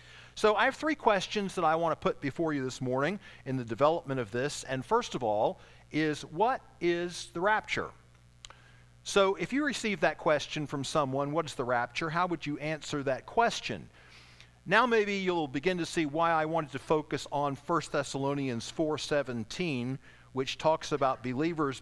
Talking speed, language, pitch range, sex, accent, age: 180 wpm, English, 125-170 Hz, male, American, 50-69